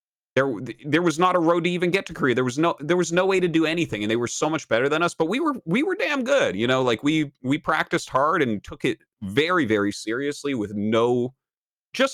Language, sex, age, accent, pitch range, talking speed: English, male, 30-49, American, 90-135 Hz, 255 wpm